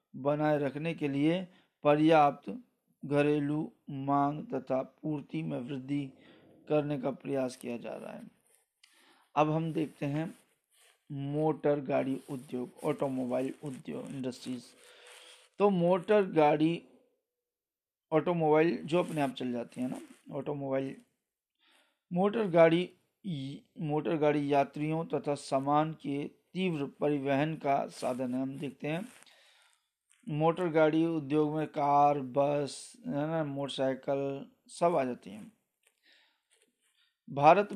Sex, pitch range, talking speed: male, 140-165 Hz, 110 wpm